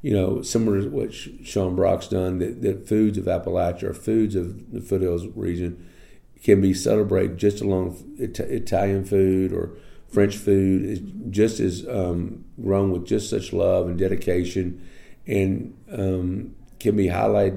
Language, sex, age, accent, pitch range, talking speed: English, male, 50-69, American, 90-105 Hz, 155 wpm